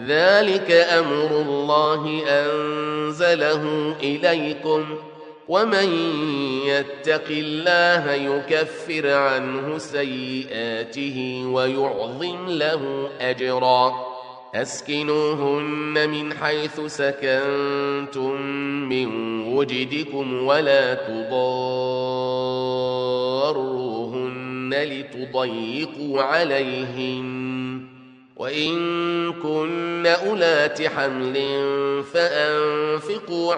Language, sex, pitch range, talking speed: Arabic, male, 130-155 Hz, 50 wpm